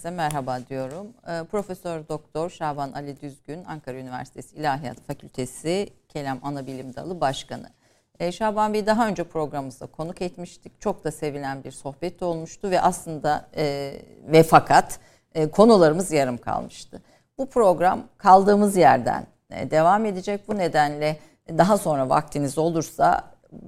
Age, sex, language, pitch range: 50-69, female, Turkish, 140-180 Hz